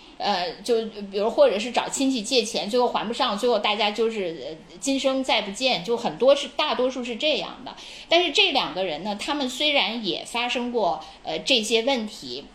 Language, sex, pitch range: Chinese, female, 205-270 Hz